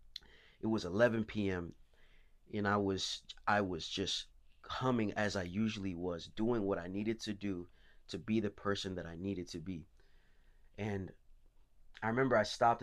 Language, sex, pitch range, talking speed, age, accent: English, male, 85-105 Hz, 165 wpm, 20-39, American